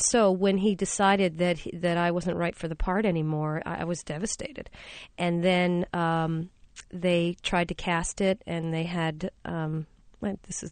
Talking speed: 190 wpm